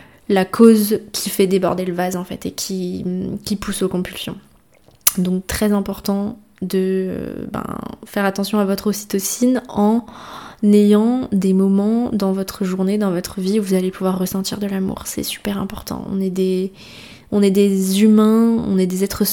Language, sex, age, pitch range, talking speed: French, female, 20-39, 185-205 Hz, 175 wpm